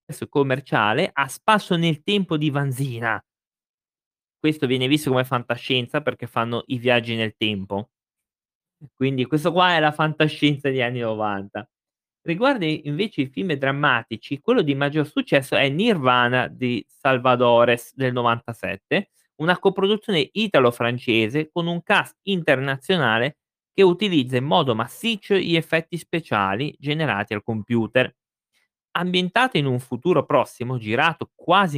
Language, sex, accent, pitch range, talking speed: Italian, male, native, 120-165 Hz, 125 wpm